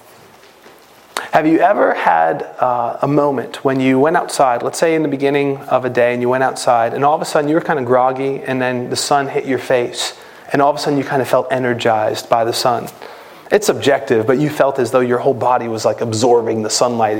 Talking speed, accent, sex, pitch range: 235 wpm, American, male, 130-220 Hz